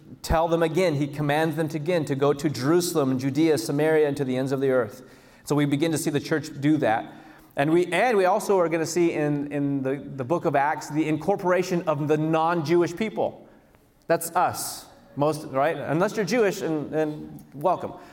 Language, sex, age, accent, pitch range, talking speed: English, male, 30-49, American, 160-230 Hz, 210 wpm